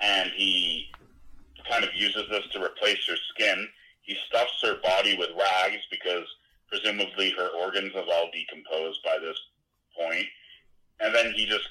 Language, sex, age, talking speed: English, male, 30-49, 155 wpm